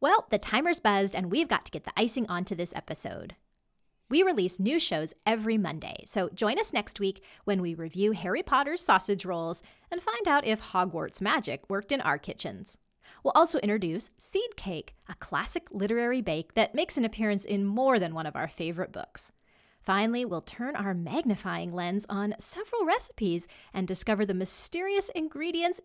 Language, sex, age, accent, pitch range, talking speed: English, female, 30-49, American, 190-280 Hz, 180 wpm